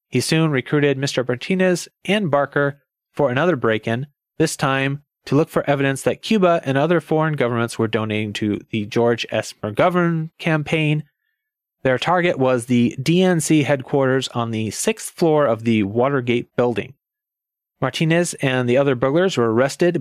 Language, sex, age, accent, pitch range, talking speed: English, male, 30-49, American, 125-165 Hz, 155 wpm